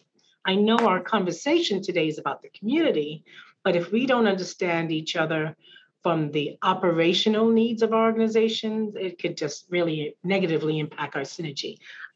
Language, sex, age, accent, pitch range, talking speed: English, female, 40-59, American, 175-220 Hz, 155 wpm